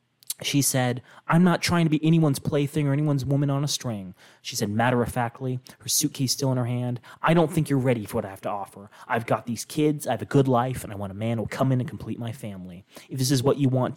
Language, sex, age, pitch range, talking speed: English, male, 20-39, 115-135 Hz, 265 wpm